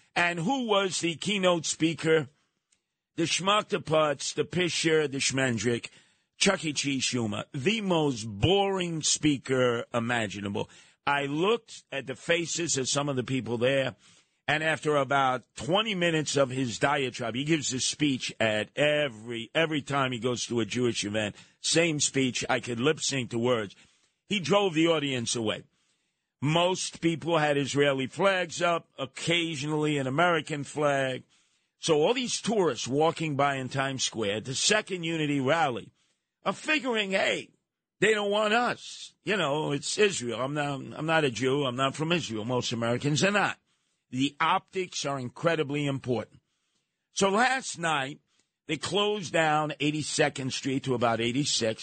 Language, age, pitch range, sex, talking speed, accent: English, 50-69, 130-165 Hz, male, 150 wpm, American